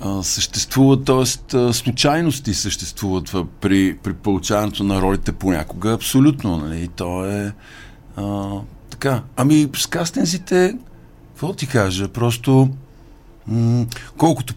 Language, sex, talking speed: Bulgarian, male, 105 wpm